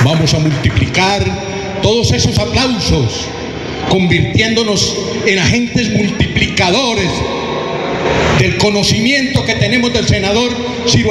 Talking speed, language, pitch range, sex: 90 wpm, Spanish, 155-245 Hz, male